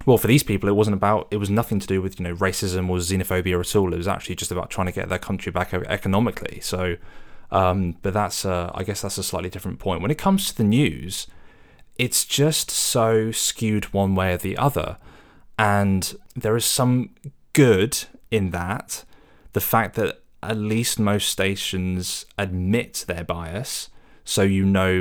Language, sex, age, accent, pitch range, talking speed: English, male, 20-39, British, 90-105 Hz, 190 wpm